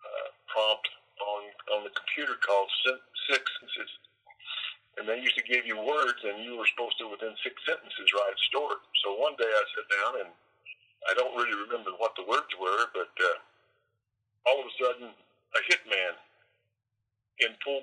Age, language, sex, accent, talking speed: 50-69, English, male, American, 180 wpm